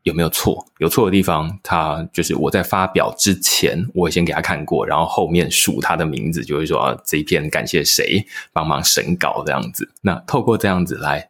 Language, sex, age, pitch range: Chinese, male, 20-39, 85-105 Hz